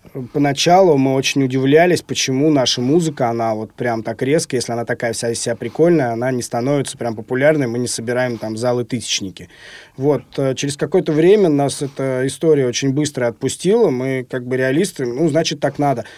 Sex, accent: male, native